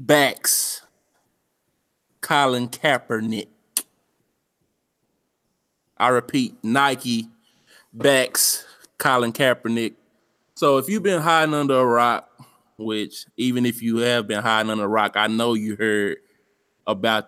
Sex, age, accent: male, 20-39, American